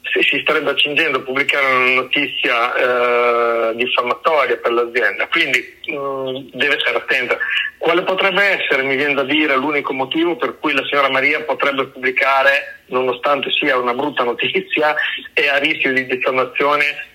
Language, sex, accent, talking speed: Italian, male, native, 145 wpm